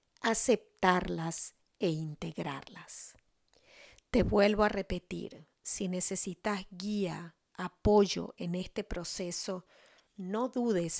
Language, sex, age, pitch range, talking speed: English, female, 40-59, 175-215 Hz, 85 wpm